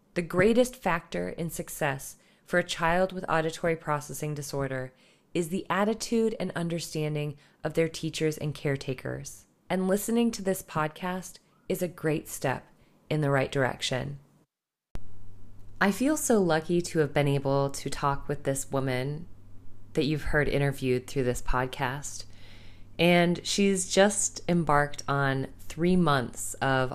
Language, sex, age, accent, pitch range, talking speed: English, female, 20-39, American, 125-155 Hz, 140 wpm